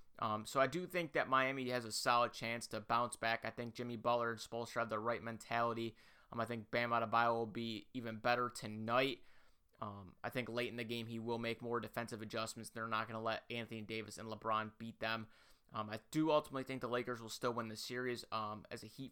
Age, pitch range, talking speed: 30-49, 110-125 Hz, 230 wpm